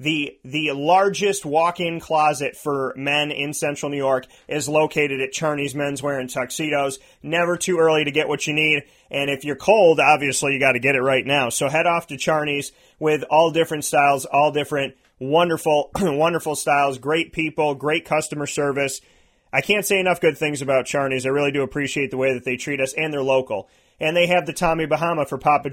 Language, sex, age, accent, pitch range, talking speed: English, male, 30-49, American, 135-155 Hz, 200 wpm